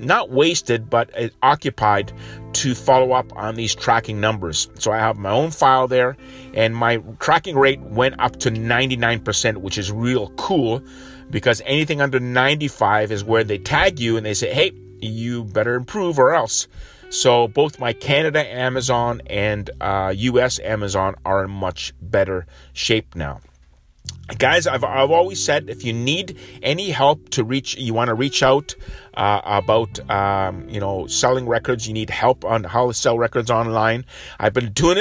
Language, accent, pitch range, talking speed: English, American, 105-130 Hz, 170 wpm